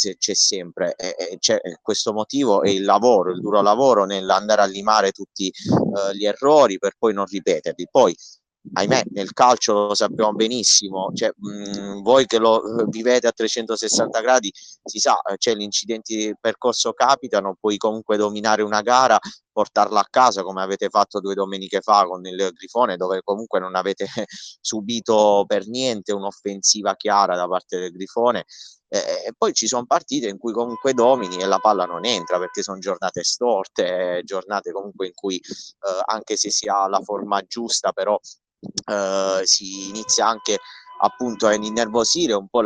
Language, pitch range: Italian, 100-120 Hz